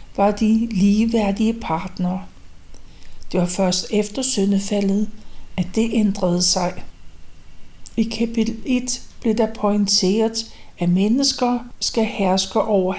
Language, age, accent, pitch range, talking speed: Danish, 60-79, native, 185-230 Hz, 110 wpm